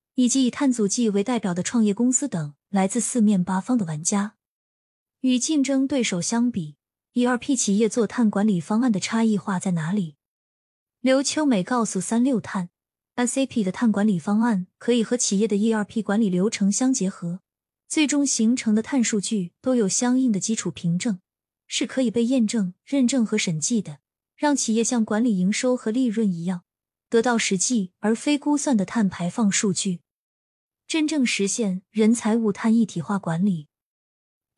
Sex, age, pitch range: female, 20-39, 190-245 Hz